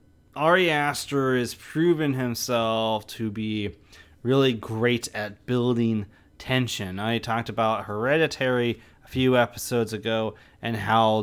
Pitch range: 110-145 Hz